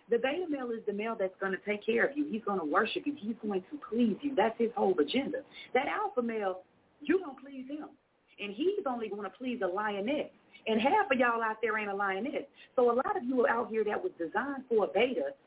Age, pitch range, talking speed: 40-59, 205-270 Hz, 255 wpm